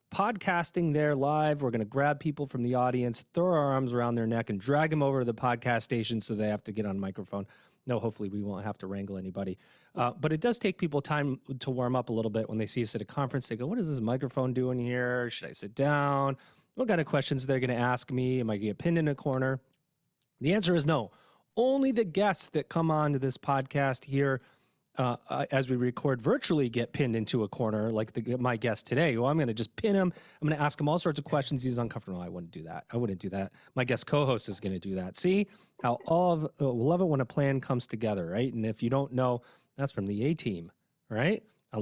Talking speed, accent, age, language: 260 wpm, American, 30-49, English